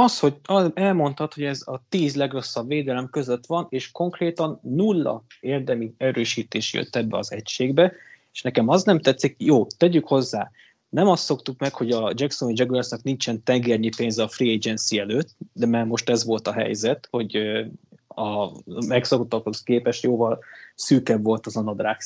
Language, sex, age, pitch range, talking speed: Hungarian, male, 20-39, 110-140 Hz, 165 wpm